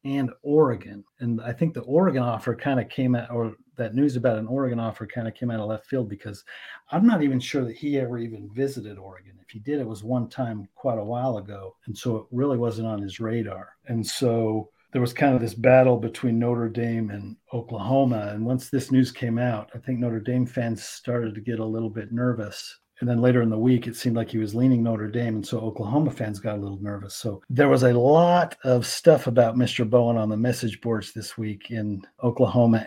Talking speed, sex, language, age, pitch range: 230 wpm, male, English, 40-59, 110-130 Hz